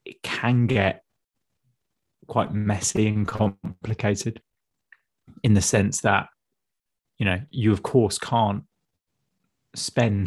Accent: British